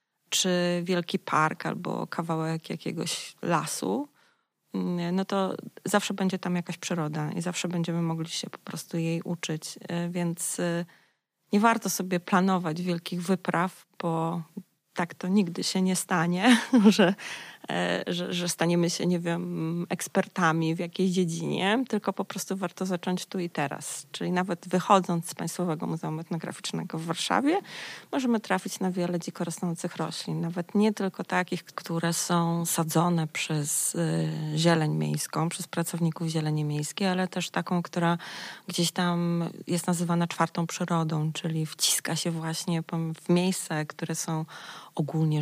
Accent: native